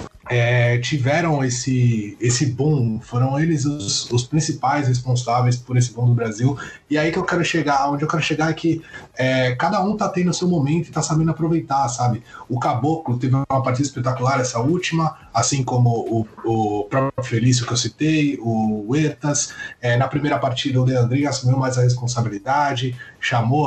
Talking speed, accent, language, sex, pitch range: 170 wpm, Brazilian, Portuguese, male, 120-145 Hz